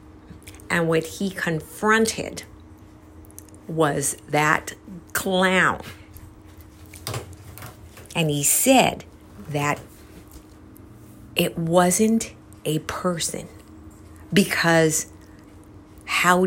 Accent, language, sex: American, English, female